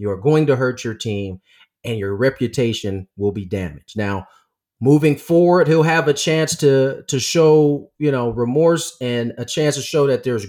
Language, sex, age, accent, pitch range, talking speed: English, male, 30-49, American, 120-160 Hz, 190 wpm